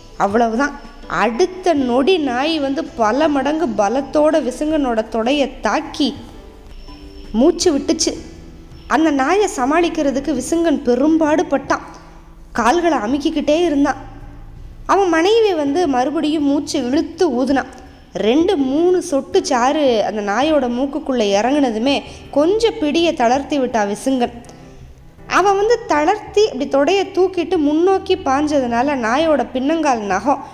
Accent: native